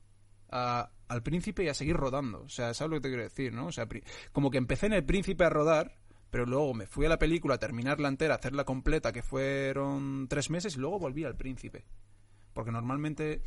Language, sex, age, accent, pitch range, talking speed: Spanish, male, 20-39, Spanish, 105-140 Hz, 225 wpm